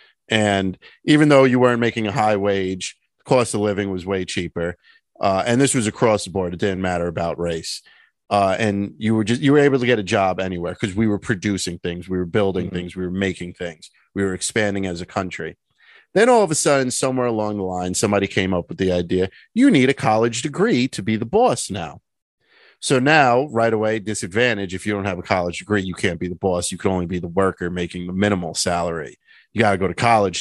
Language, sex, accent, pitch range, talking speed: English, male, American, 90-115 Hz, 230 wpm